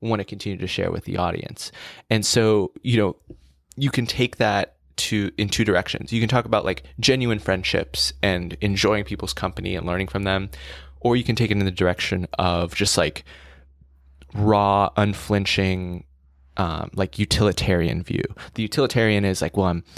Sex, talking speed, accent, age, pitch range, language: male, 175 wpm, American, 20-39, 90-105 Hz, English